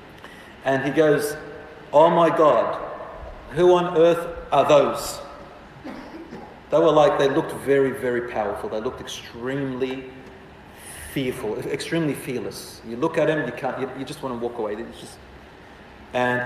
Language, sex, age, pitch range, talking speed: English, male, 40-59, 125-175 Hz, 140 wpm